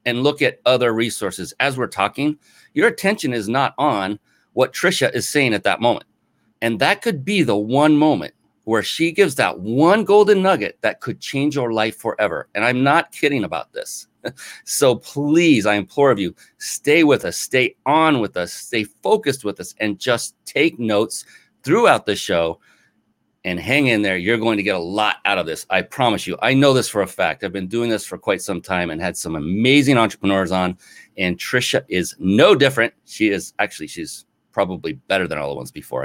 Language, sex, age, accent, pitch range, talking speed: English, male, 40-59, American, 105-150 Hz, 205 wpm